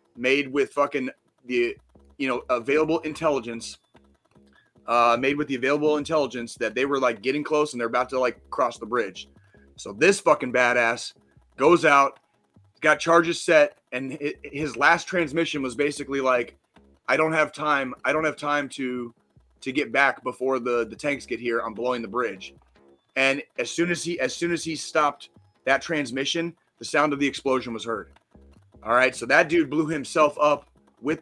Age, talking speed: 30-49, 180 wpm